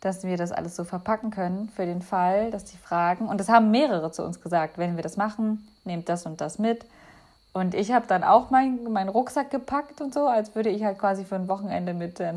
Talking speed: 245 wpm